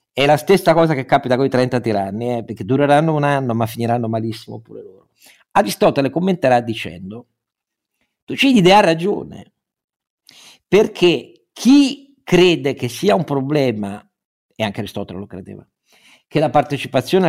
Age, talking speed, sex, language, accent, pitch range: 50-69, 150 wpm, male, Italian, native, 120-180 Hz